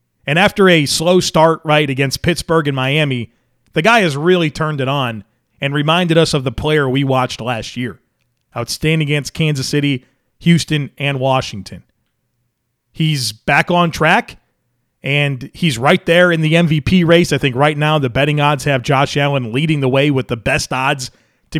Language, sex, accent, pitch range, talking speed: English, male, American, 125-170 Hz, 180 wpm